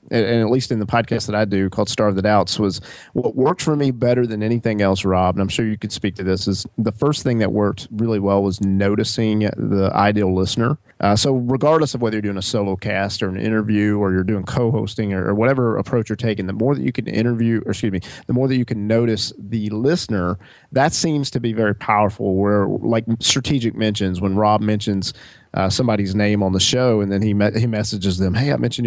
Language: English